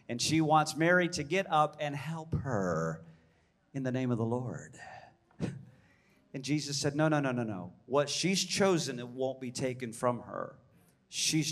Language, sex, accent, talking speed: English, male, American, 175 wpm